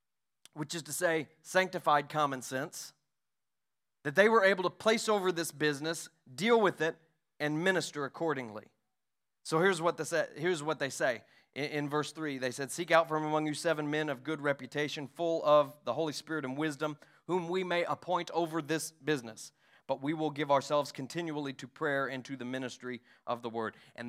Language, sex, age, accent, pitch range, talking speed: English, male, 30-49, American, 140-185 Hz, 180 wpm